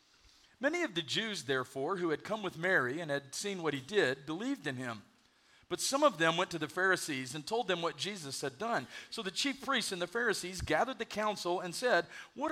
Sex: male